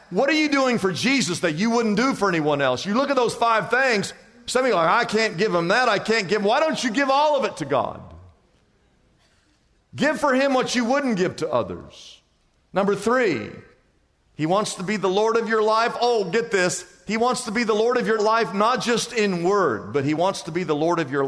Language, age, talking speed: English, 50-69, 245 wpm